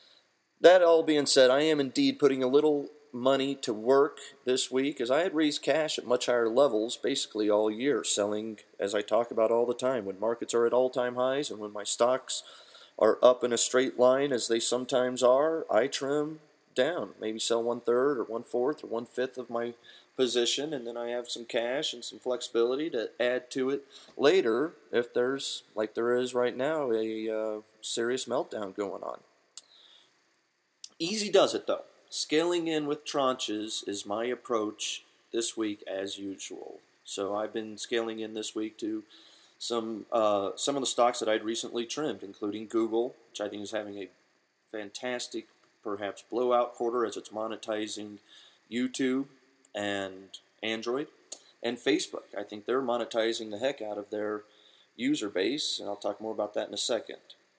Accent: American